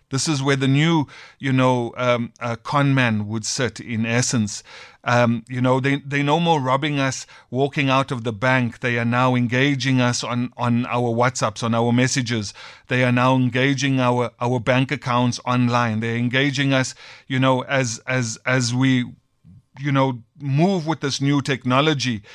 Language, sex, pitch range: English, male, 125-145 Hz